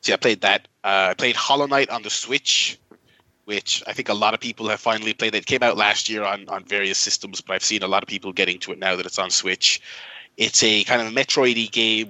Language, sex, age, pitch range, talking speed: English, male, 30-49, 105-130 Hz, 275 wpm